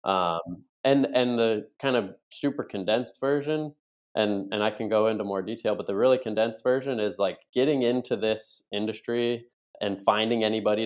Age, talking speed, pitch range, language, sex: 20-39, 170 wpm, 95-115 Hz, English, male